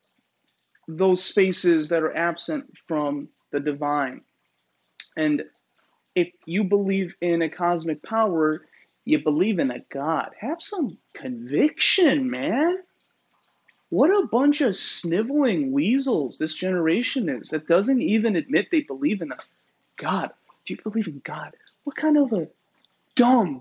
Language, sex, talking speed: English, male, 135 wpm